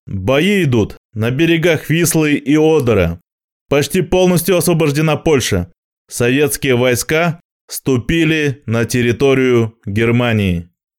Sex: male